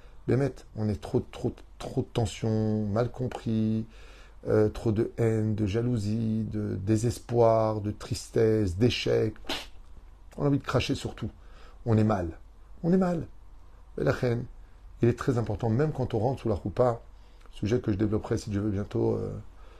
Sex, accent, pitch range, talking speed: male, French, 95-120 Hz, 170 wpm